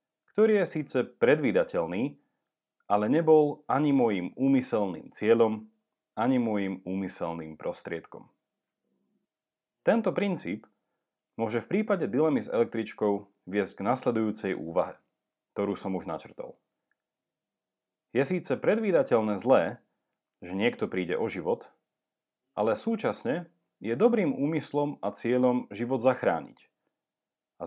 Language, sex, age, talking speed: Slovak, male, 40-59, 105 wpm